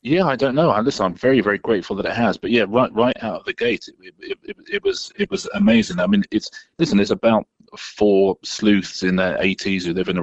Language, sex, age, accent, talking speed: English, male, 30-49, British, 250 wpm